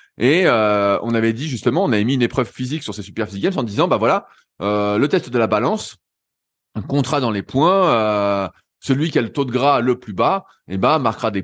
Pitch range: 100-140 Hz